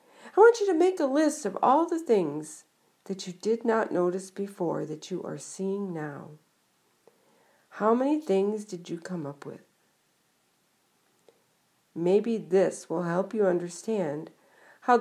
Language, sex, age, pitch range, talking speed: English, female, 50-69, 180-250 Hz, 150 wpm